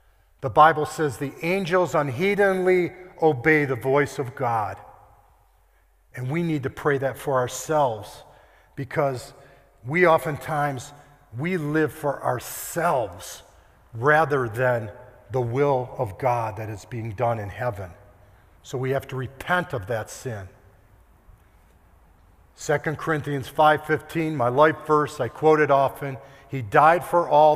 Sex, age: male, 50-69